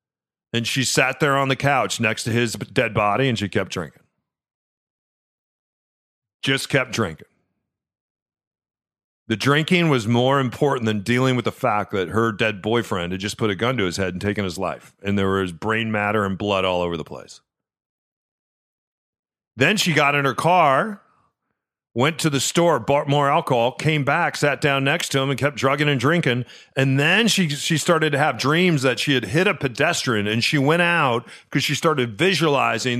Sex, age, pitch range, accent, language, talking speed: male, 40-59, 115-150 Hz, American, English, 185 wpm